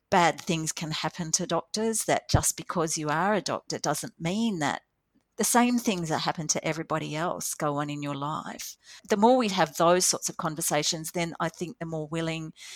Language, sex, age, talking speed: English, female, 40-59, 200 wpm